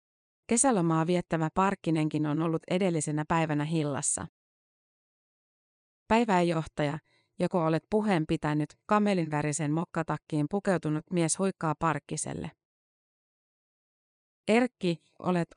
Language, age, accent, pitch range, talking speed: Finnish, 30-49, native, 155-185 Hz, 80 wpm